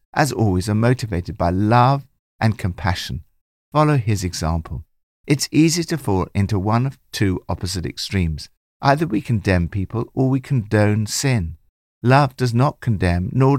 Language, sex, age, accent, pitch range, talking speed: English, male, 60-79, British, 90-125 Hz, 150 wpm